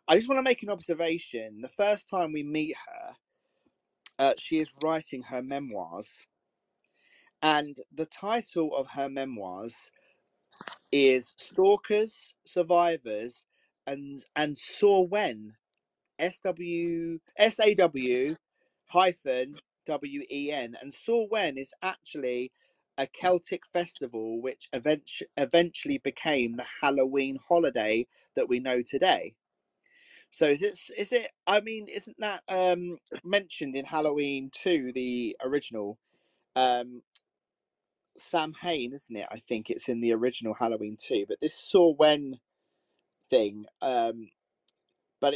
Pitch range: 130-180 Hz